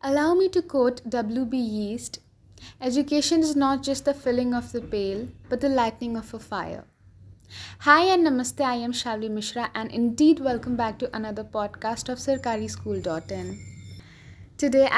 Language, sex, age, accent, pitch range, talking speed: English, female, 10-29, Indian, 215-270 Hz, 150 wpm